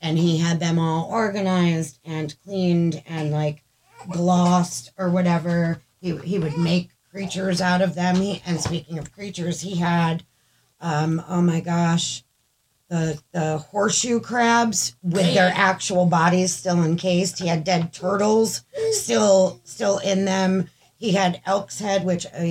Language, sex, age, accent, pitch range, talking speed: English, female, 40-59, American, 165-190 Hz, 150 wpm